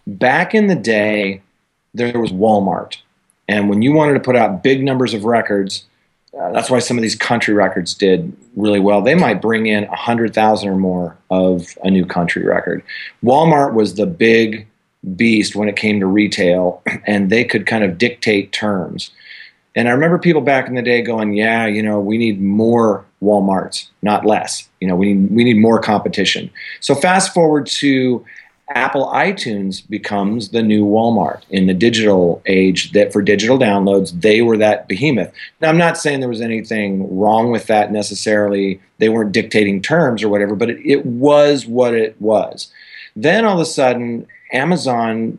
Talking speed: 180 wpm